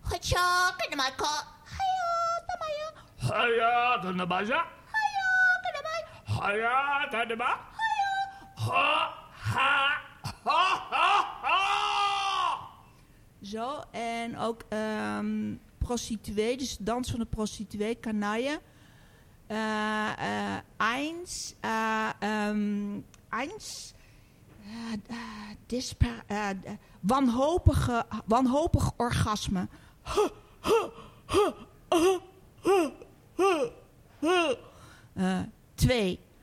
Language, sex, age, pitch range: Dutch, female, 50-69, 205-315 Hz